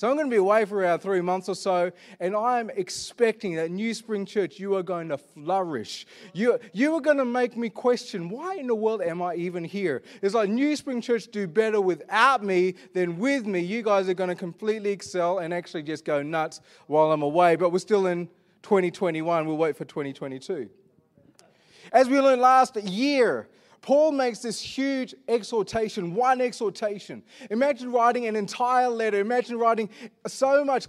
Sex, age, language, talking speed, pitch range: male, 30-49, English, 190 wpm, 190-250 Hz